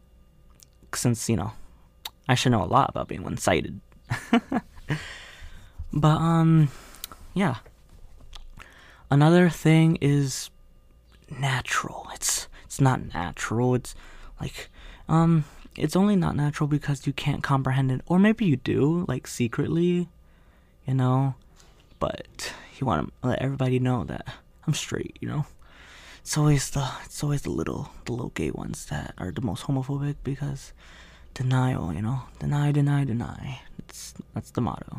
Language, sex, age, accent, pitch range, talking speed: English, male, 20-39, American, 115-150 Hz, 140 wpm